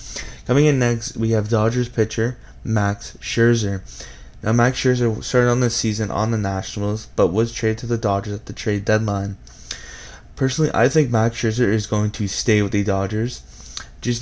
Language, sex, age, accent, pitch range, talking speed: English, male, 20-39, American, 105-120 Hz, 175 wpm